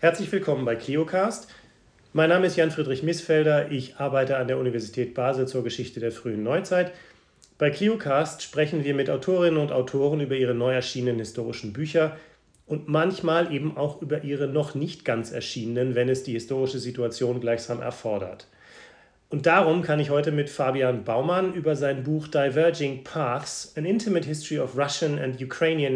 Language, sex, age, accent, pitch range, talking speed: French, male, 40-59, German, 130-160 Hz, 170 wpm